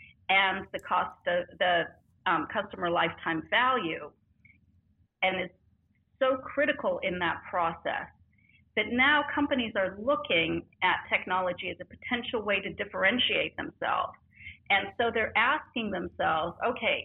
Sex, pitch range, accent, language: female, 185-245 Hz, American, English